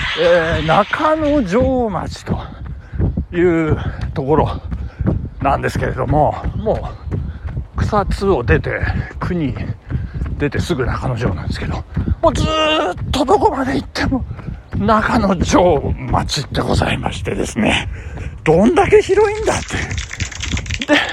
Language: Japanese